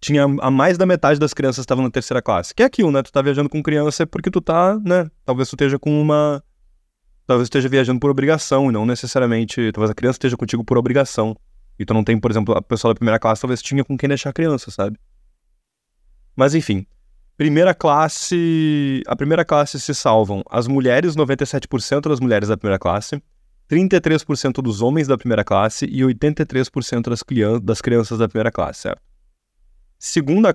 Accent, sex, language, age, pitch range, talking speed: Brazilian, male, Portuguese, 20-39, 110-145 Hz, 195 wpm